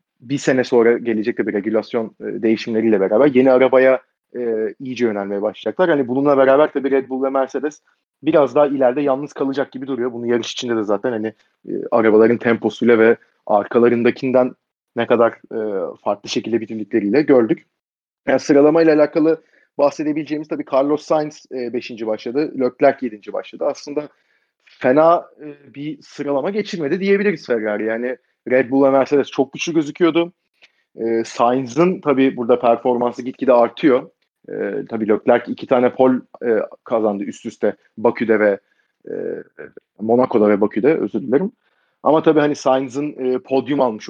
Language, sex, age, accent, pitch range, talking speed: Turkish, male, 30-49, native, 115-145 Hz, 150 wpm